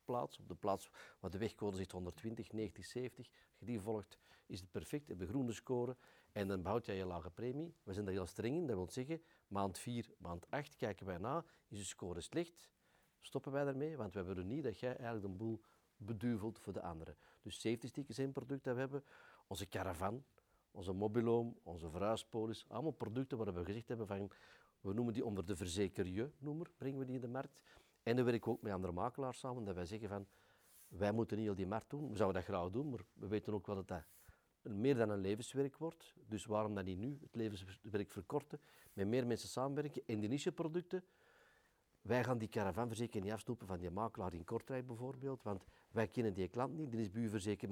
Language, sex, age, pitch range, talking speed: Dutch, male, 40-59, 100-130 Hz, 220 wpm